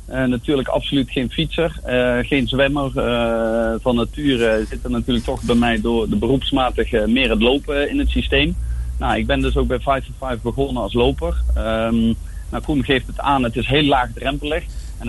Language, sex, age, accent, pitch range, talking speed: Dutch, male, 40-59, Dutch, 110-135 Hz, 205 wpm